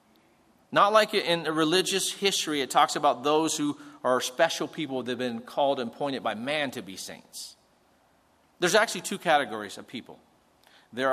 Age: 40-59